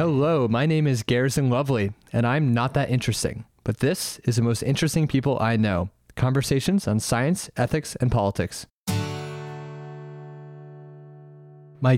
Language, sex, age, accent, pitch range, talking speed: English, male, 20-39, American, 105-130 Hz, 135 wpm